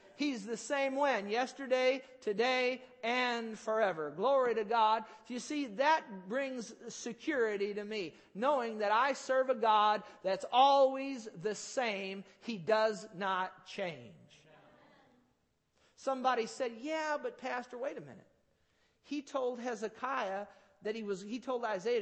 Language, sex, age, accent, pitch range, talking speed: English, male, 50-69, American, 210-255 Hz, 135 wpm